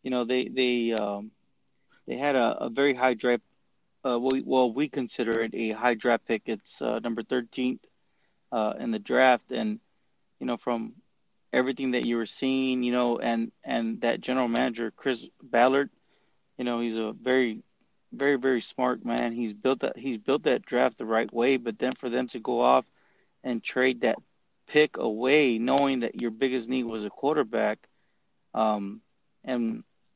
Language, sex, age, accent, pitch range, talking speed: English, male, 30-49, American, 115-130 Hz, 180 wpm